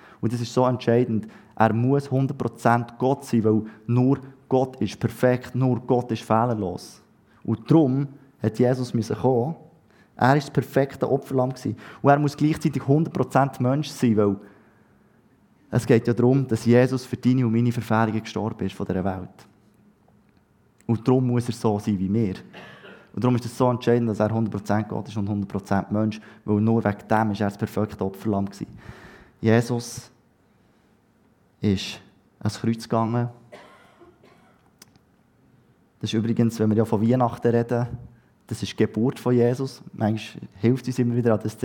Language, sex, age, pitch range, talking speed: German, male, 20-39, 105-125 Hz, 165 wpm